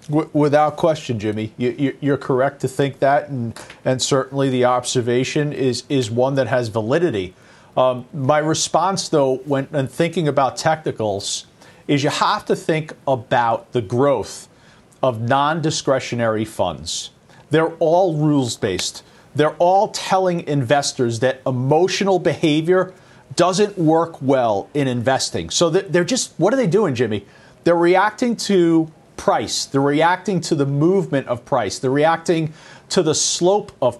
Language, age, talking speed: English, 40-59, 140 wpm